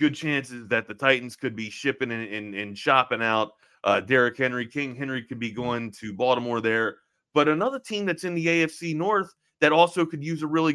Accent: American